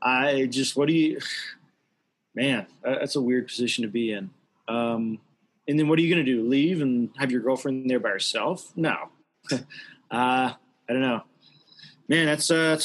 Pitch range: 120-155 Hz